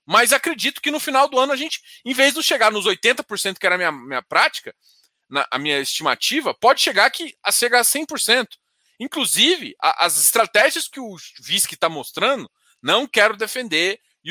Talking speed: 190 wpm